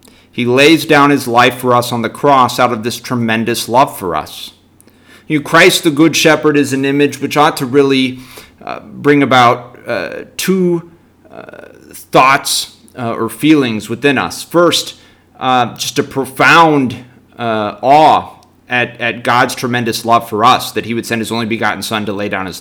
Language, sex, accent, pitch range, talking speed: English, male, American, 115-140 Hz, 180 wpm